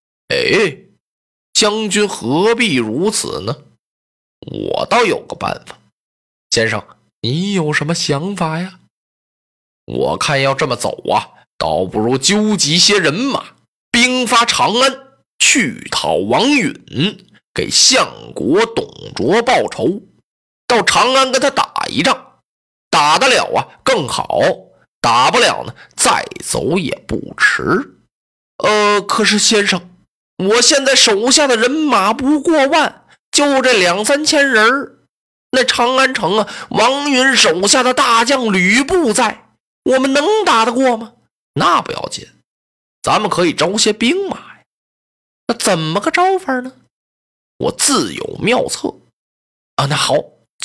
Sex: male